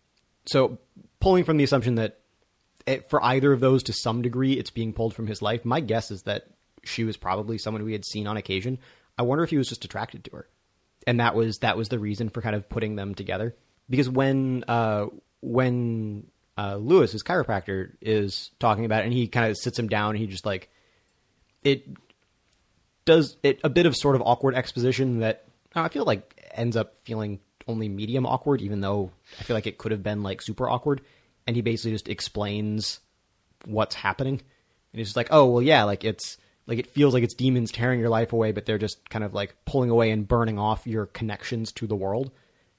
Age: 30-49